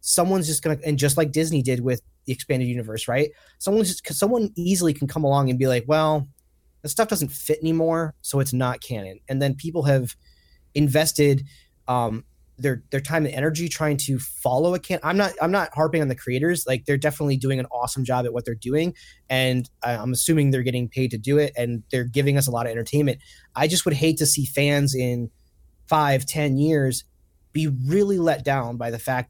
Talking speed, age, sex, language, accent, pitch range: 215 wpm, 20-39, male, English, American, 120-150 Hz